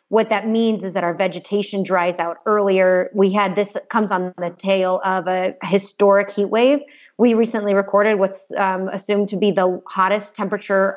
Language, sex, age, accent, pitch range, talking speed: English, female, 30-49, American, 190-225 Hz, 180 wpm